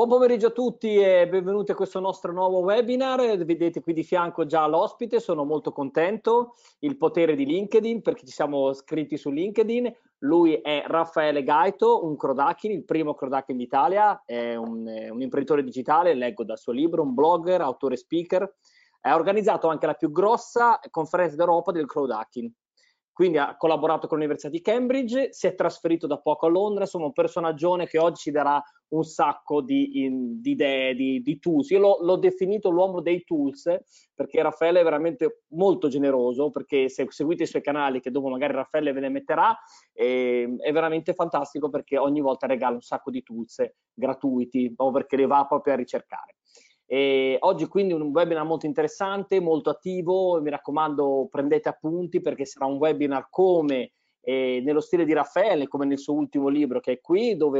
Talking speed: 180 wpm